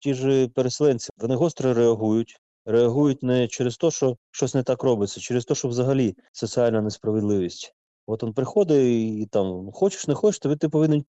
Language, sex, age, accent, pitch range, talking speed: Ukrainian, male, 30-49, native, 105-135 Hz, 180 wpm